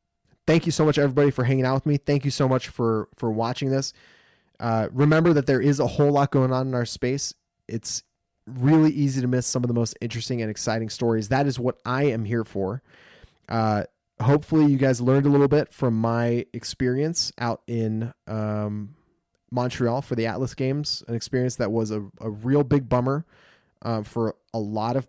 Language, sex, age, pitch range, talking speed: English, male, 20-39, 115-140 Hz, 200 wpm